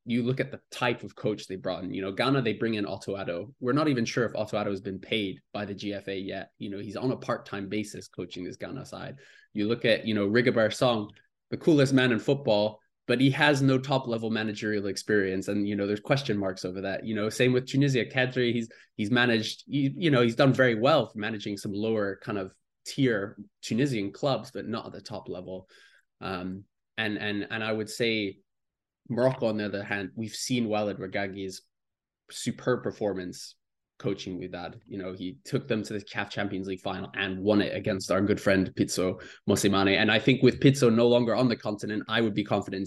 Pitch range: 100-120 Hz